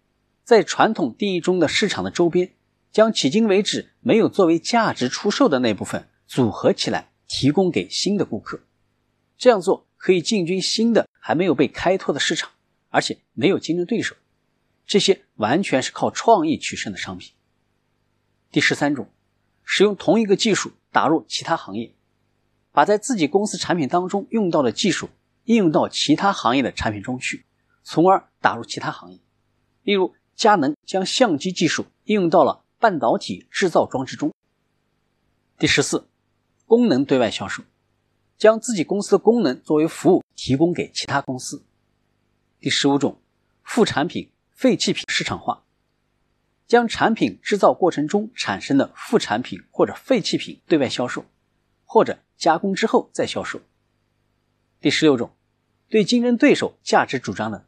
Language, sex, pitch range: Chinese, male, 145-225 Hz